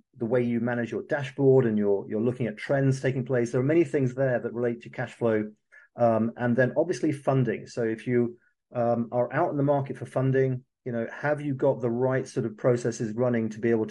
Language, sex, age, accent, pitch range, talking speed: English, male, 40-59, British, 120-135 Hz, 230 wpm